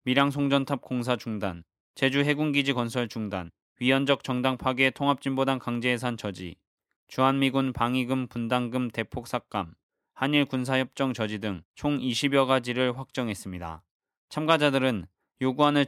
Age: 20-39